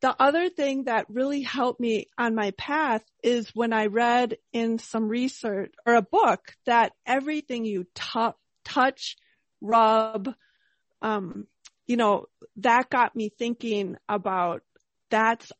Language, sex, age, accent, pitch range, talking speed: English, female, 40-59, American, 210-255 Hz, 135 wpm